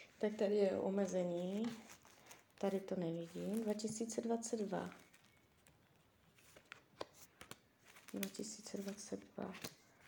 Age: 20-39